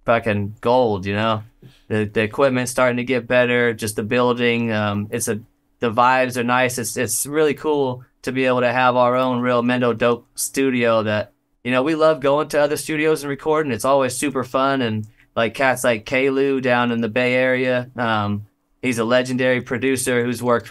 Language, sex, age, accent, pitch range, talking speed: English, male, 20-39, American, 115-135 Hz, 200 wpm